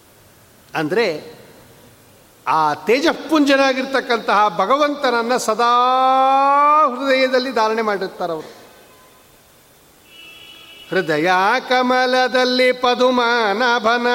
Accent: native